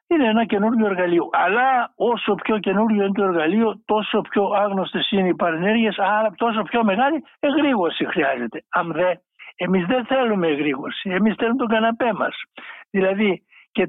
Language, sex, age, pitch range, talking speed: Greek, male, 60-79, 175-230 Hz, 155 wpm